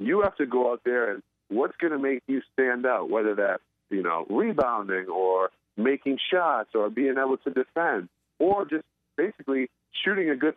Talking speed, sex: 185 wpm, male